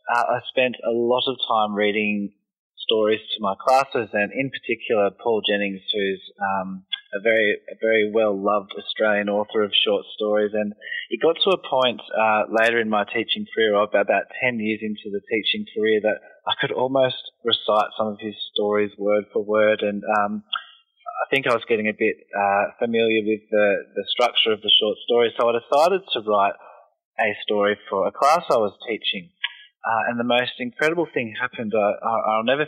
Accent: Australian